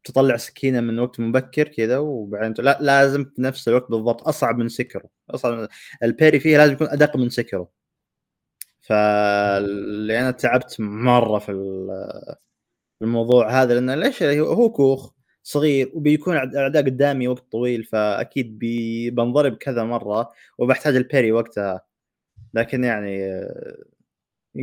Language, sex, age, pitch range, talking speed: Arabic, male, 20-39, 110-135 Hz, 125 wpm